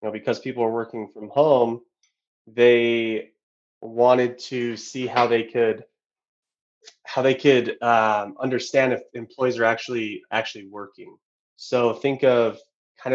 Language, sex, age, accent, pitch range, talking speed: English, male, 20-39, American, 110-140 Hz, 135 wpm